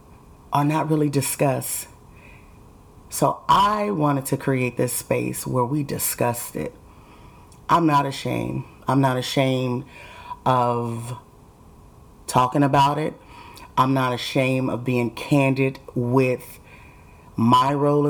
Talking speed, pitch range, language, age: 115 wpm, 125-155 Hz, English, 30-49